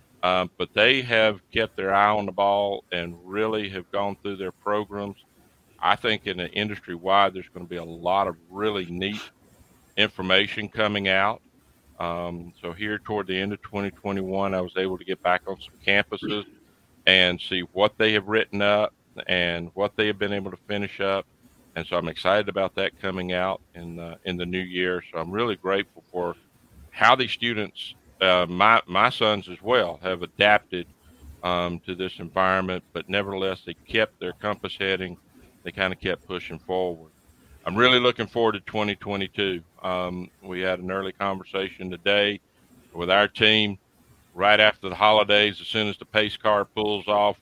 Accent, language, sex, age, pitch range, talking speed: American, English, male, 50-69, 90-105 Hz, 180 wpm